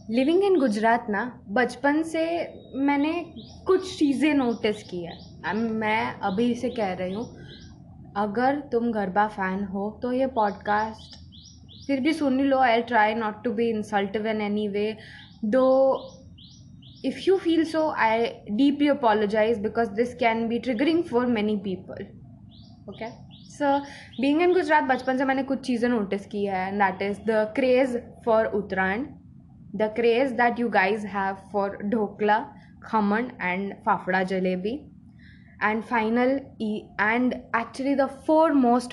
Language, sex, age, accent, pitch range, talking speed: Hindi, female, 10-29, native, 205-250 Hz, 140 wpm